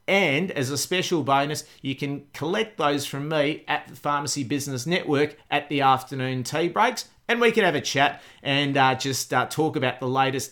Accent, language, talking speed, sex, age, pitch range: Australian, English, 200 wpm, male, 40-59, 140-175 Hz